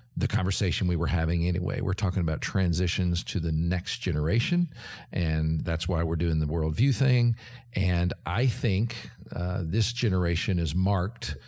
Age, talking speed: 50-69, 175 wpm